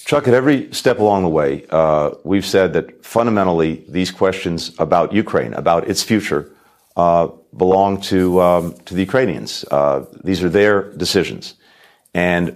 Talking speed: 155 wpm